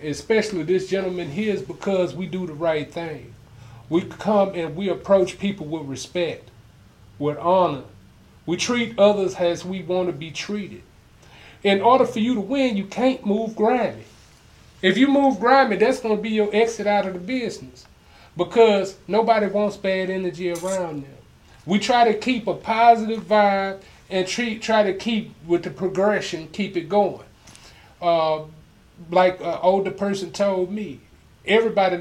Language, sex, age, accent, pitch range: Japanese, male, 30-49, American, 155-205 Hz